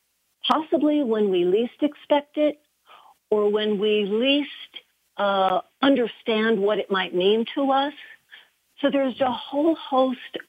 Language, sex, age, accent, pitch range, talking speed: English, female, 50-69, American, 185-265 Hz, 130 wpm